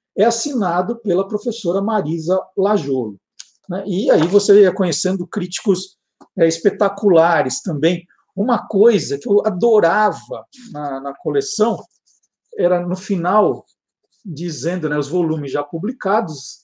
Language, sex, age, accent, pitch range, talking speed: Portuguese, male, 50-69, Brazilian, 170-235 Hz, 110 wpm